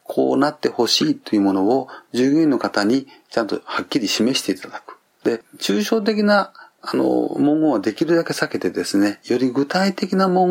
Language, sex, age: Japanese, male, 40-59